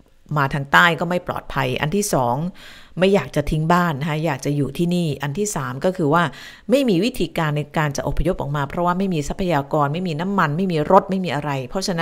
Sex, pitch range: female, 140-185 Hz